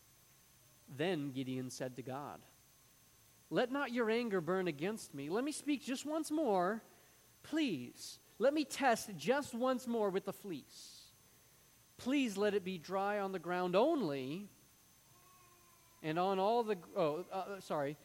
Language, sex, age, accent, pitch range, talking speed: English, male, 40-59, American, 155-210 Hz, 145 wpm